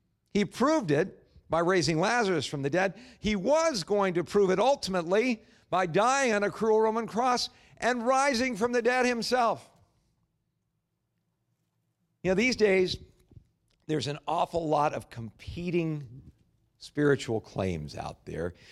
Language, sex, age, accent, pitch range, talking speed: English, male, 50-69, American, 135-205 Hz, 140 wpm